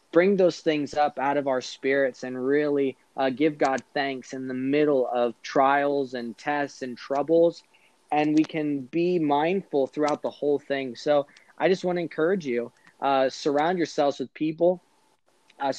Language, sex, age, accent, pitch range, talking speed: English, male, 20-39, American, 135-165 Hz, 170 wpm